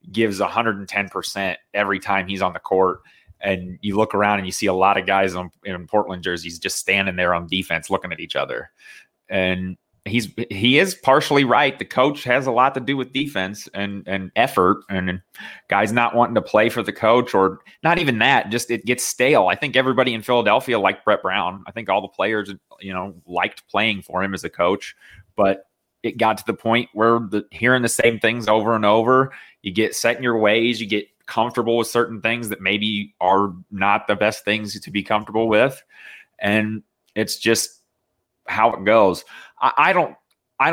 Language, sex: English, male